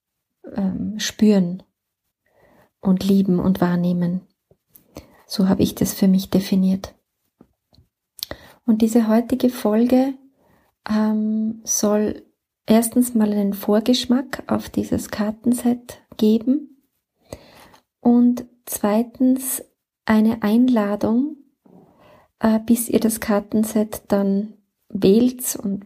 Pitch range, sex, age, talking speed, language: 200-230 Hz, female, 30-49, 85 wpm, German